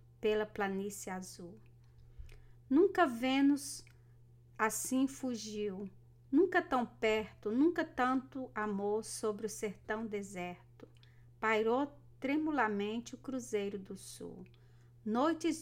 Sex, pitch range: female, 190-255 Hz